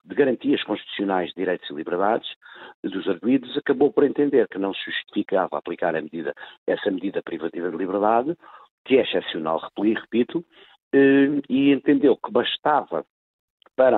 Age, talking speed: 50-69, 145 wpm